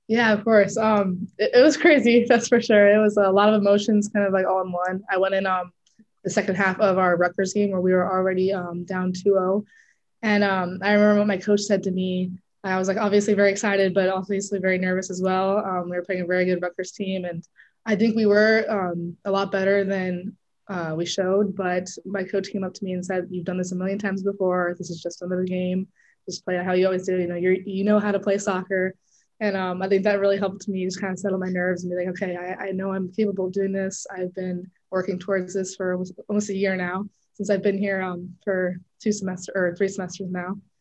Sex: female